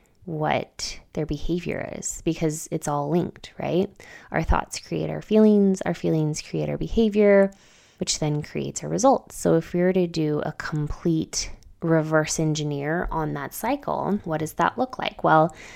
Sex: female